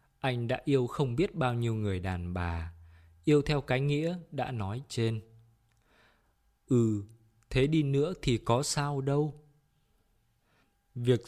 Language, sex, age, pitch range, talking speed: Vietnamese, male, 20-39, 105-135 Hz, 140 wpm